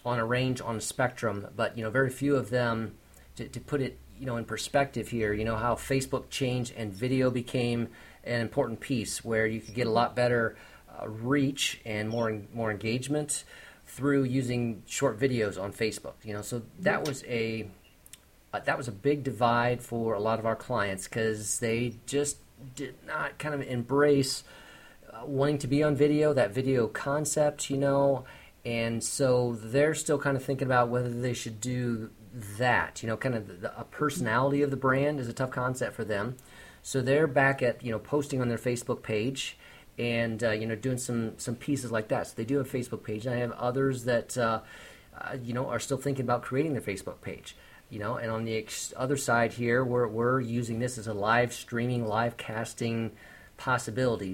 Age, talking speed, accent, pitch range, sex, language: 40-59, 205 wpm, American, 115-135 Hz, male, English